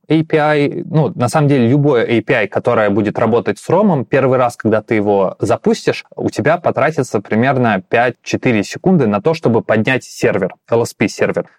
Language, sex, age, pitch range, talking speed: Russian, male, 20-39, 105-135 Hz, 155 wpm